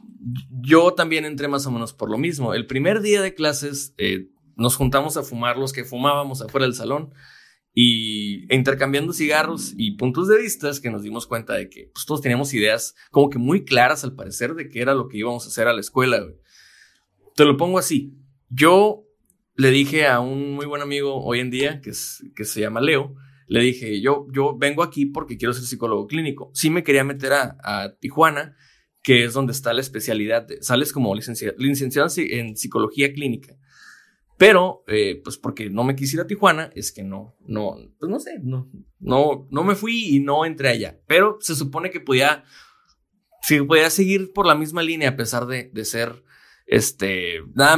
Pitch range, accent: 120-160 Hz, Mexican